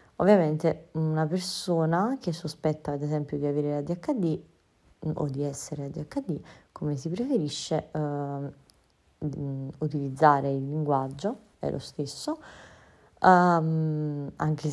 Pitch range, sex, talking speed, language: 145-170 Hz, female, 105 wpm, Italian